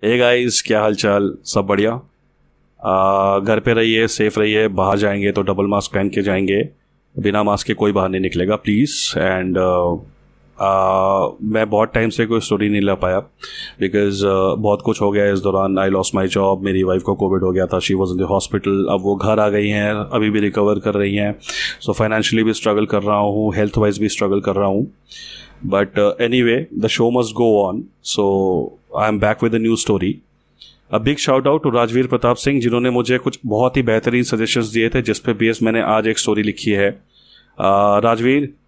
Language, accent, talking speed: Hindi, native, 195 wpm